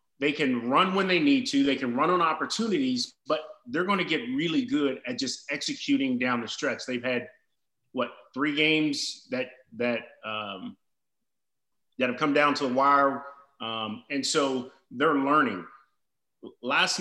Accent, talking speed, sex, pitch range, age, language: American, 160 wpm, male, 125-175 Hz, 30-49, English